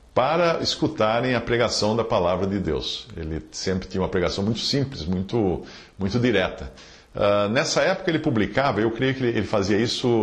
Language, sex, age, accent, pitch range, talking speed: English, male, 50-69, Brazilian, 95-130 Hz, 170 wpm